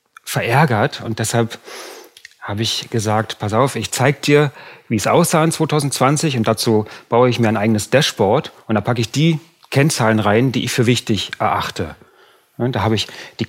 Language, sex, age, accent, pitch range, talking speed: German, male, 40-59, German, 115-140 Hz, 180 wpm